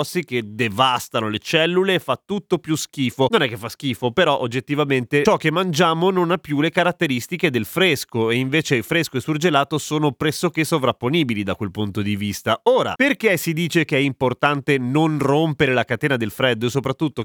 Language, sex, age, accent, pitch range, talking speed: Italian, male, 30-49, native, 115-155 Hz, 190 wpm